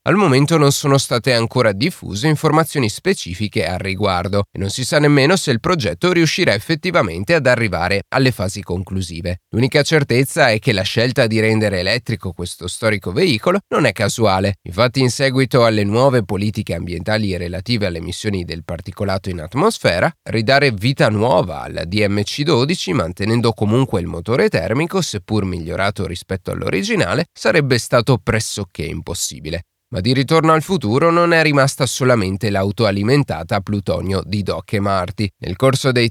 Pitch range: 95-140 Hz